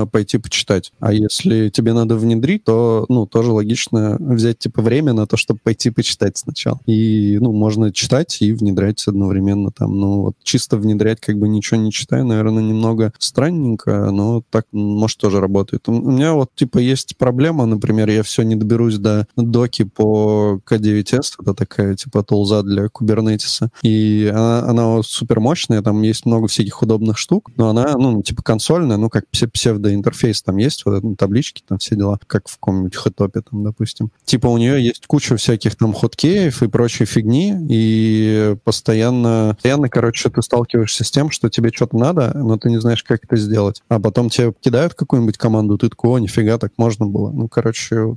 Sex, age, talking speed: male, 20-39, 185 wpm